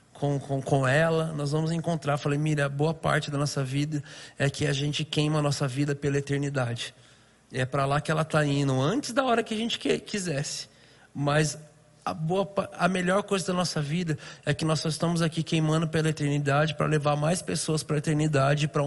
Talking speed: 215 wpm